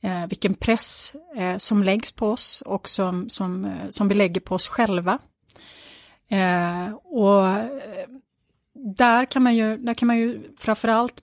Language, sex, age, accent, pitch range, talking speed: Swedish, female, 30-49, native, 185-230 Hz, 160 wpm